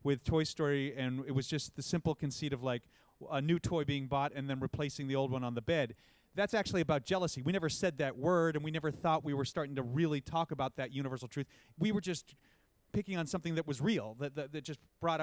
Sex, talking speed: male, 250 wpm